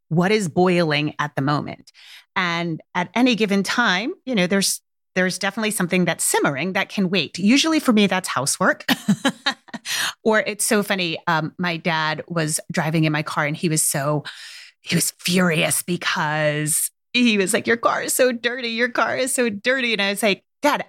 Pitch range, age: 170-220 Hz, 30-49